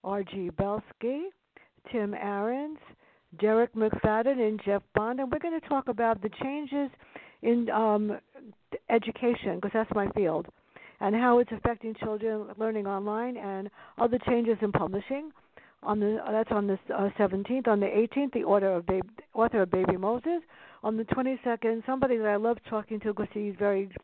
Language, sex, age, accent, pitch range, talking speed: English, female, 60-79, American, 205-250 Hz, 165 wpm